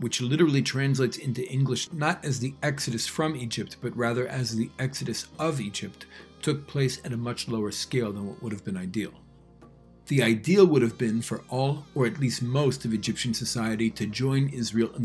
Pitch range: 115-140 Hz